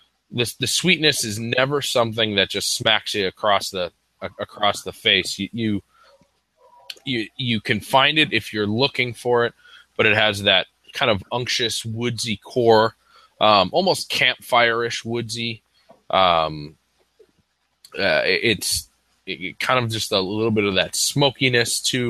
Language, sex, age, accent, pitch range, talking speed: English, male, 20-39, American, 100-120 Hz, 155 wpm